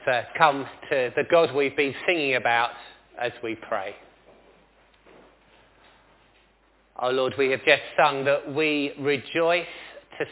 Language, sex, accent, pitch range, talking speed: English, male, British, 135-175 Hz, 130 wpm